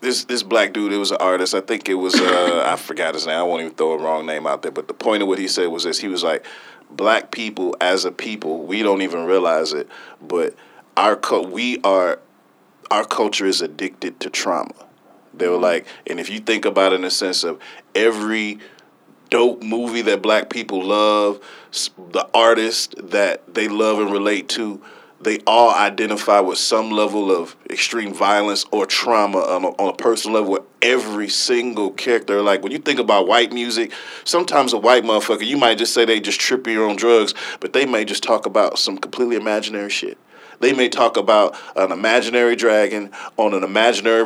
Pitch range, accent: 105-130 Hz, American